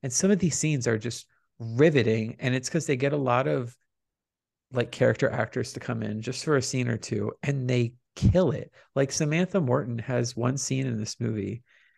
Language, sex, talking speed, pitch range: English, male, 205 wpm, 115-140 Hz